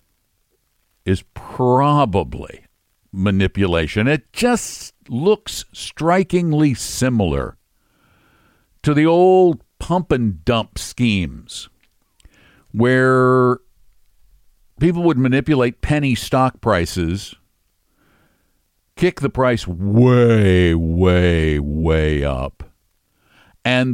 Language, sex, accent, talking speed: English, male, American, 75 wpm